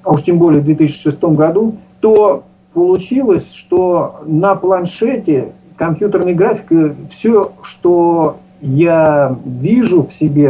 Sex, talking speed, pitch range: male, 115 wpm, 155-190 Hz